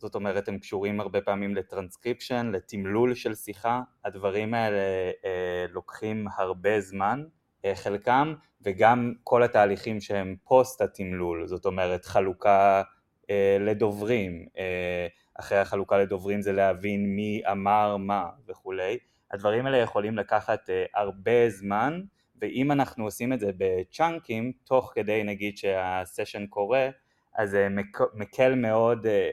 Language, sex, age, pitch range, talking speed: Hebrew, male, 20-39, 95-120 Hz, 125 wpm